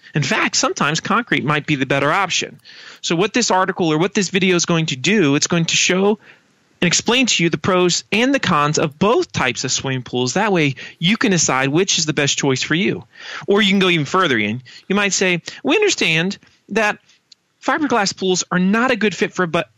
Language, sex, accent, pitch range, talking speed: English, male, American, 135-195 Hz, 230 wpm